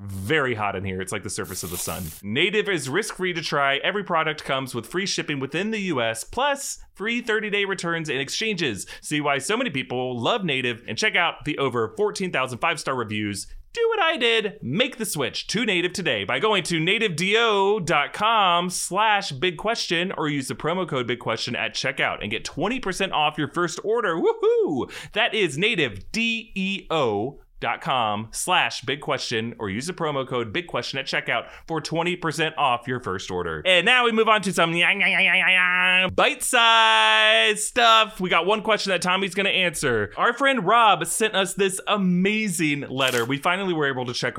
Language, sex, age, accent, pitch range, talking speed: English, male, 30-49, American, 125-195 Hz, 185 wpm